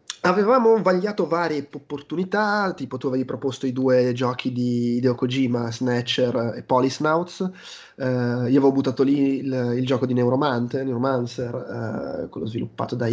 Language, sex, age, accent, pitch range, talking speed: Italian, male, 20-39, native, 125-145 Hz, 150 wpm